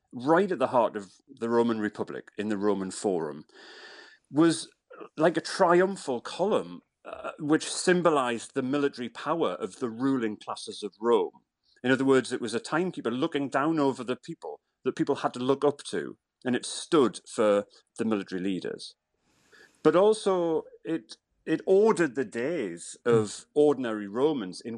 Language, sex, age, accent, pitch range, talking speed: English, male, 40-59, British, 110-155 Hz, 160 wpm